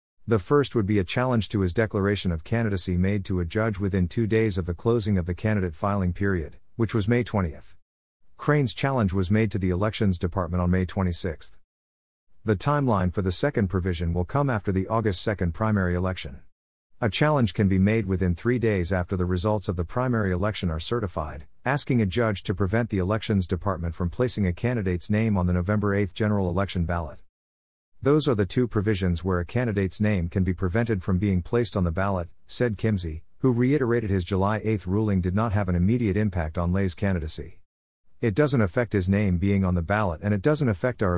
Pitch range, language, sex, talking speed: 90-110 Hz, English, male, 205 wpm